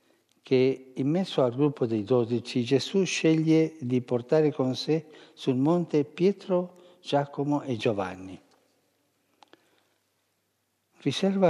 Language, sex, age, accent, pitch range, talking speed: Italian, male, 60-79, native, 120-155 Hz, 105 wpm